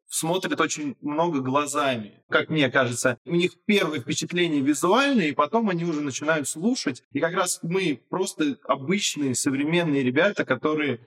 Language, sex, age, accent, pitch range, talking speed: Russian, male, 20-39, native, 130-170 Hz, 140 wpm